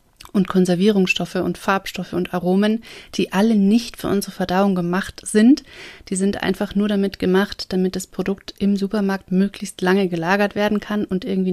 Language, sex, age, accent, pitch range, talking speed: German, female, 30-49, German, 185-210 Hz, 165 wpm